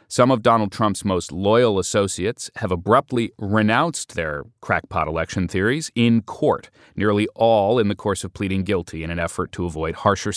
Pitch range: 95-125 Hz